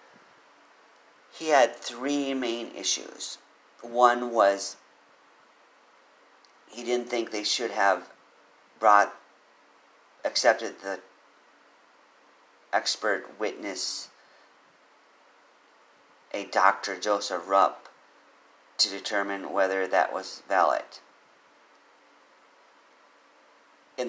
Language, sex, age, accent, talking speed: English, male, 50-69, American, 70 wpm